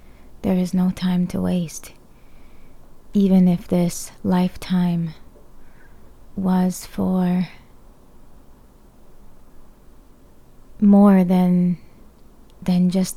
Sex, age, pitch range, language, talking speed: female, 20-39, 175-195 Hz, English, 75 wpm